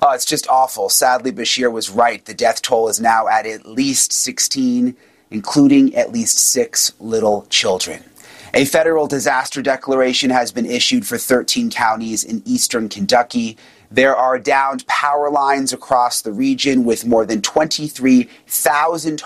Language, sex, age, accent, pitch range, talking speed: English, male, 30-49, American, 125-165 Hz, 150 wpm